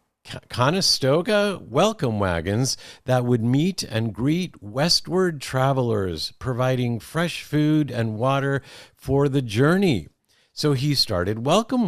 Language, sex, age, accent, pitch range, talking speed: English, male, 50-69, American, 110-145 Hz, 110 wpm